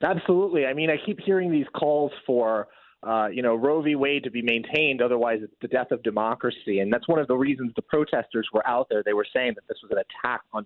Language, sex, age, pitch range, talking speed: English, male, 30-49, 120-150 Hz, 250 wpm